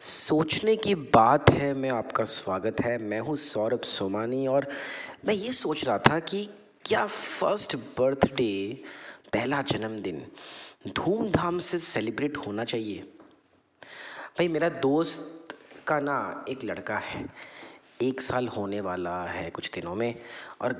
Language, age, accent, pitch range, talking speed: Hindi, 30-49, native, 115-145 Hz, 135 wpm